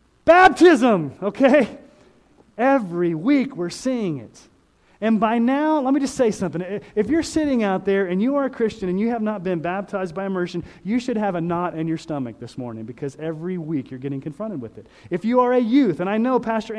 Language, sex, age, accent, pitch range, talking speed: English, male, 30-49, American, 170-240 Hz, 215 wpm